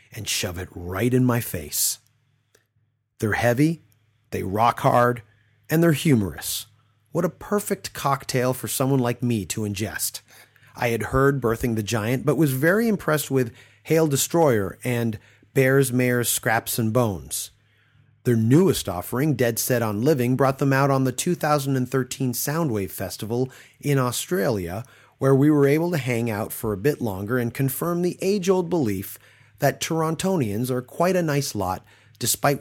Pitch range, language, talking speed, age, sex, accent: 110-140 Hz, English, 155 wpm, 30-49, male, American